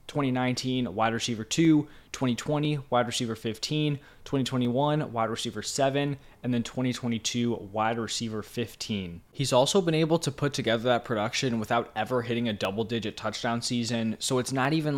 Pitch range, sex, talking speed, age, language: 110-130 Hz, male, 155 wpm, 20-39, English